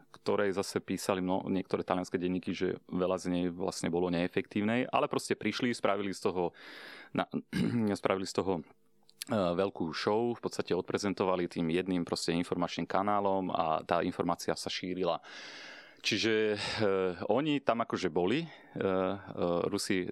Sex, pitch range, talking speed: male, 90-100 Hz, 145 wpm